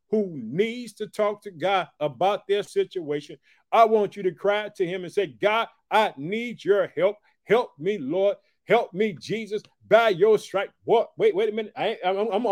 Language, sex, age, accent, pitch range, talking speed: English, male, 50-69, American, 190-225 Hz, 190 wpm